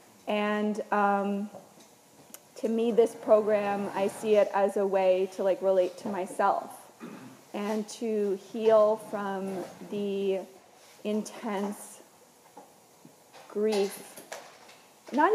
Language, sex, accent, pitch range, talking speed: English, female, American, 190-220 Hz, 100 wpm